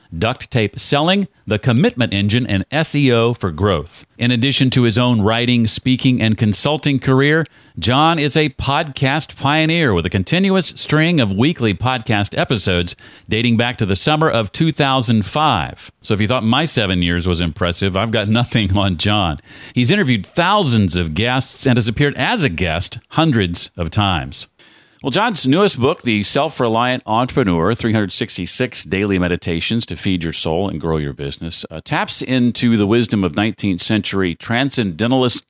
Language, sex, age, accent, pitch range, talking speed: English, male, 40-59, American, 95-130 Hz, 160 wpm